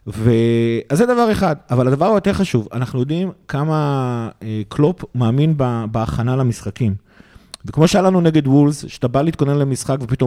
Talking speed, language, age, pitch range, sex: 150 wpm, Hebrew, 30-49, 120-155 Hz, male